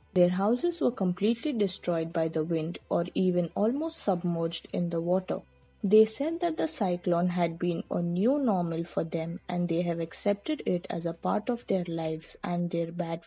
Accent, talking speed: Indian, 185 wpm